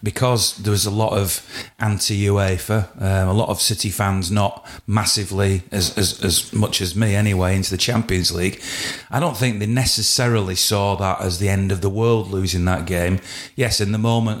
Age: 30-49